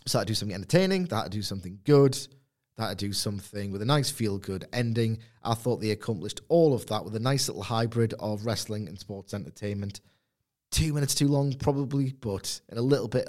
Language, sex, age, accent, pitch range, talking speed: English, male, 30-49, British, 95-120 Hz, 200 wpm